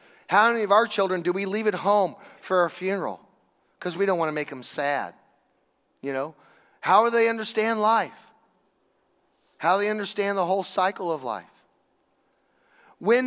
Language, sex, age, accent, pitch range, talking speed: English, male, 40-59, American, 175-215 Hz, 170 wpm